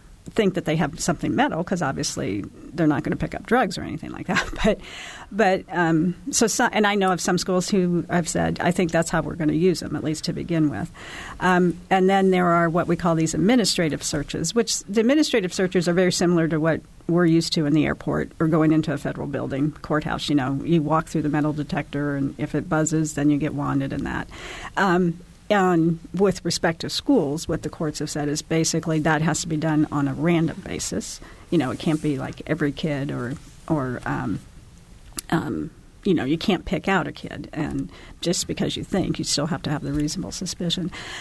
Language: English